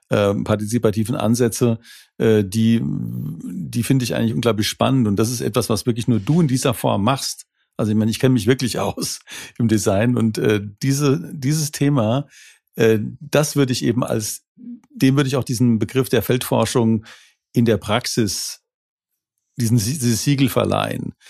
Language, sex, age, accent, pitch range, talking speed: German, male, 50-69, German, 110-135 Hz, 165 wpm